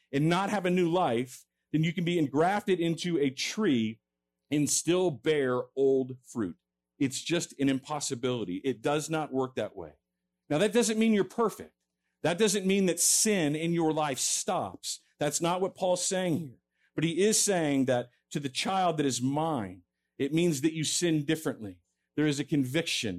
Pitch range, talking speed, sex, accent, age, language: 125-170 Hz, 185 wpm, male, American, 50-69, English